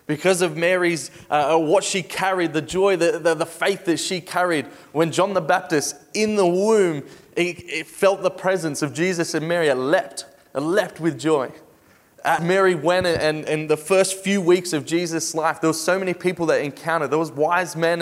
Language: English